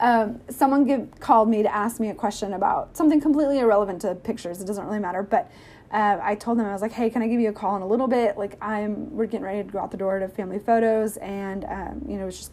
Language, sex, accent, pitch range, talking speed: English, female, American, 200-235 Hz, 280 wpm